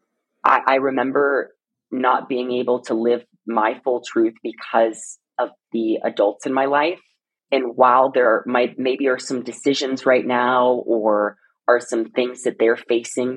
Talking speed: 155 wpm